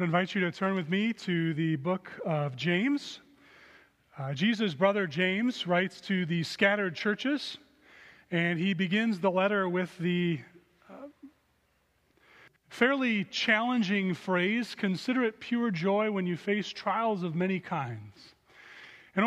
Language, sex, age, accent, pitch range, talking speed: English, male, 30-49, American, 170-215 Hz, 135 wpm